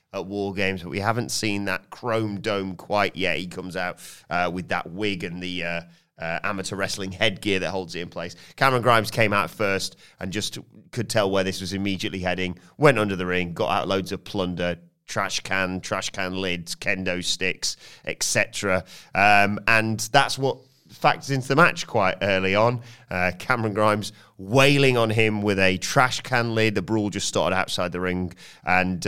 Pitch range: 95-120 Hz